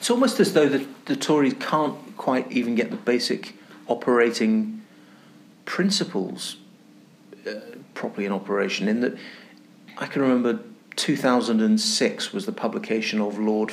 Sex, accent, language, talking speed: male, British, English, 130 wpm